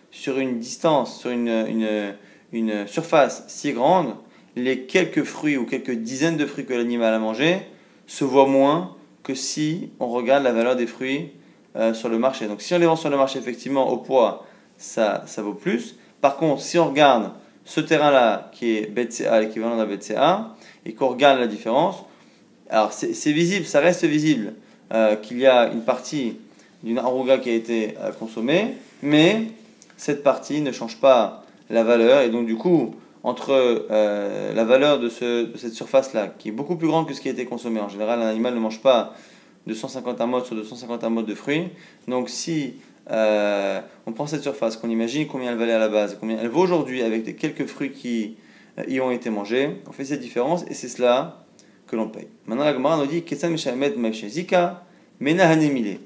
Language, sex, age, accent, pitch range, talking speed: French, male, 20-39, French, 115-150 Hz, 195 wpm